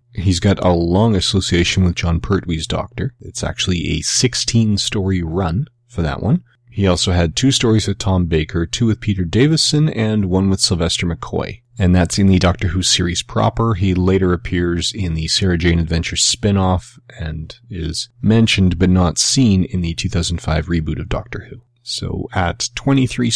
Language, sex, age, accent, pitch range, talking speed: English, male, 30-49, American, 85-115 Hz, 170 wpm